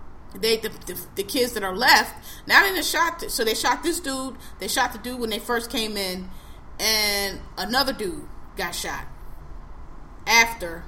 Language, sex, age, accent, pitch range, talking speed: English, female, 20-39, American, 205-280 Hz, 175 wpm